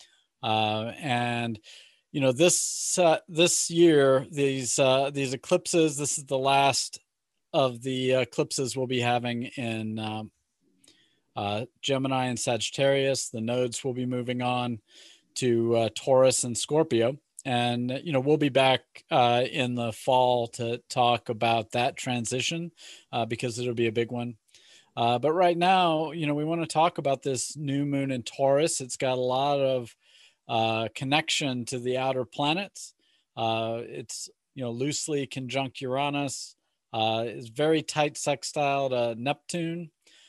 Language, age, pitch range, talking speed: English, 40-59, 120-145 Hz, 150 wpm